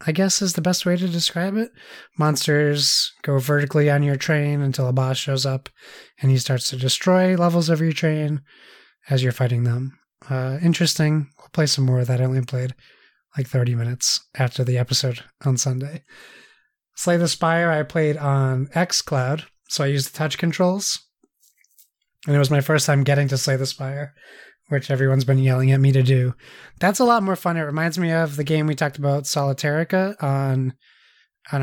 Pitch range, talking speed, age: 135-175 Hz, 190 wpm, 20-39